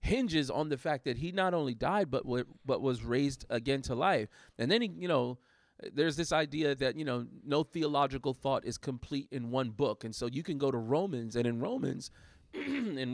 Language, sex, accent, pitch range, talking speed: English, male, American, 120-155 Hz, 210 wpm